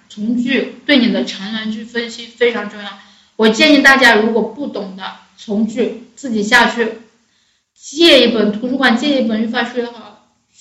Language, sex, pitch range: Chinese, female, 215-255 Hz